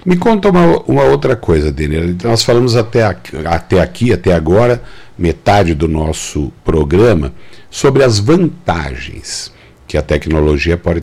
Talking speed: 135 wpm